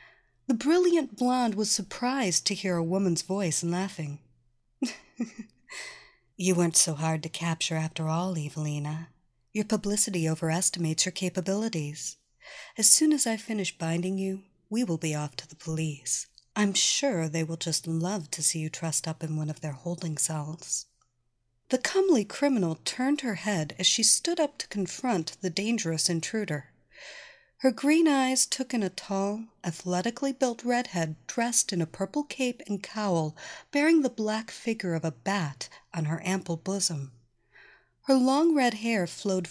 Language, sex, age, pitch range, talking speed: English, female, 50-69, 160-225 Hz, 160 wpm